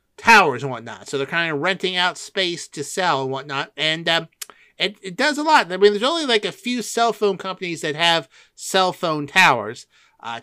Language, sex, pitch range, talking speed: English, male, 155-215 Hz, 215 wpm